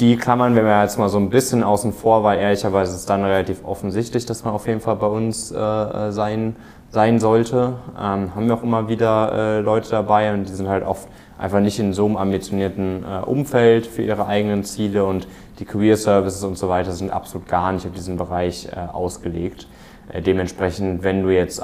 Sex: male